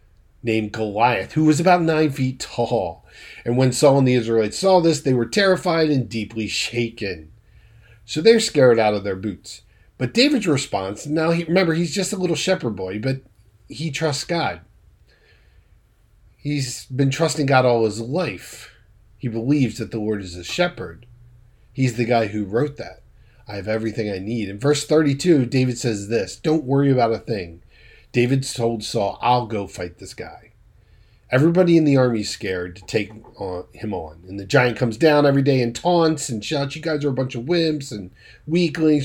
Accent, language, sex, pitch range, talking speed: American, English, male, 110-150 Hz, 185 wpm